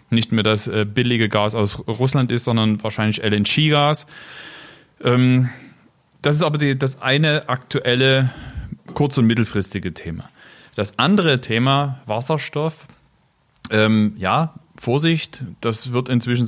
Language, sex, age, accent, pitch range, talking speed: German, male, 40-59, German, 110-140 Hz, 110 wpm